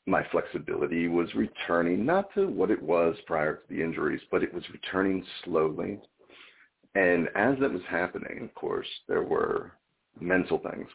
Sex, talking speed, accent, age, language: male, 160 wpm, American, 50-69, English